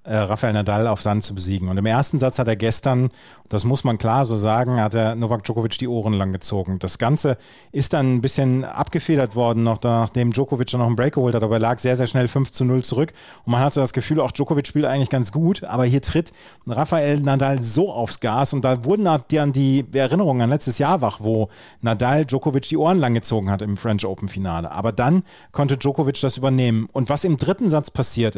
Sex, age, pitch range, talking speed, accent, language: male, 30-49, 115-145 Hz, 225 wpm, German, German